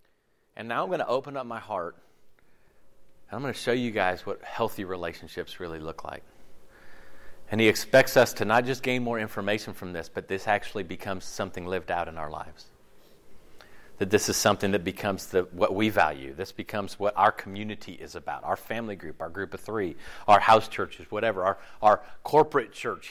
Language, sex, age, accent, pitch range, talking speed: English, male, 40-59, American, 95-115 Hz, 195 wpm